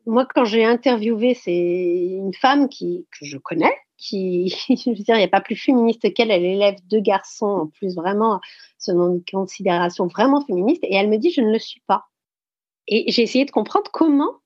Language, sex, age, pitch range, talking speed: French, female, 40-59, 190-265 Hz, 210 wpm